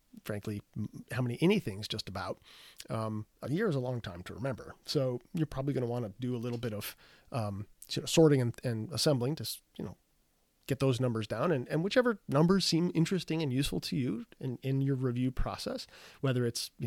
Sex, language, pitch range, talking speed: male, English, 115-155 Hz, 200 wpm